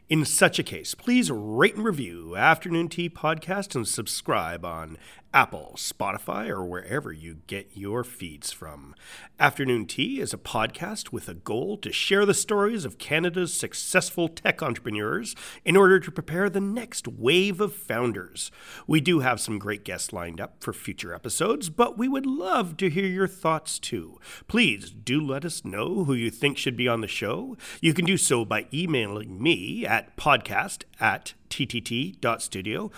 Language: English